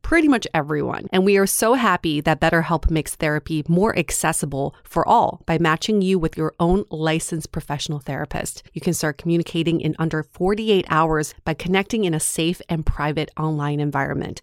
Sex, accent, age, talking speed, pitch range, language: female, American, 30-49, 175 wpm, 155-190 Hz, English